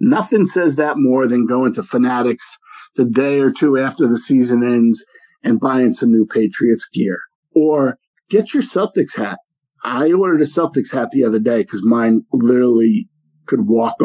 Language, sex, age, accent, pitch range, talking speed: English, male, 50-69, American, 115-165 Hz, 170 wpm